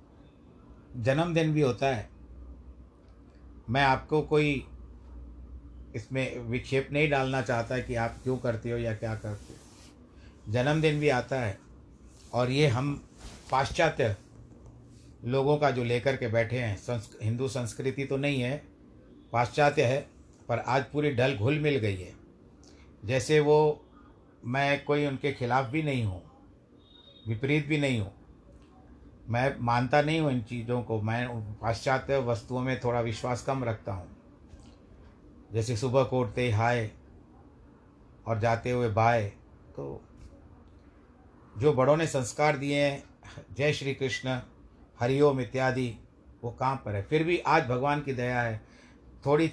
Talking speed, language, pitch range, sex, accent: 135 wpm, Hindi, 105-135 Hz, male, native